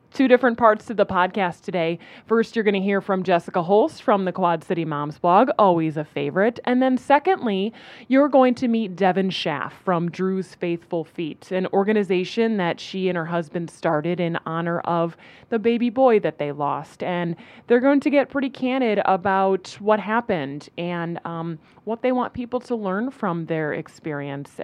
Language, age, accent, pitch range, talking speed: English, 20-39, American, 170-215 Hz, 185 wpm